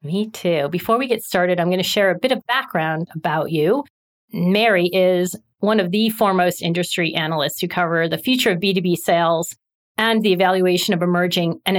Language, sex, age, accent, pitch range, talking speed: English, female, 40-59, American, 175-215 Hz, 185 wpm